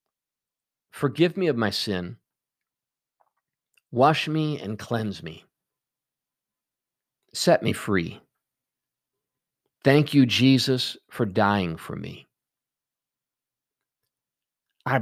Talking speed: 85 wpm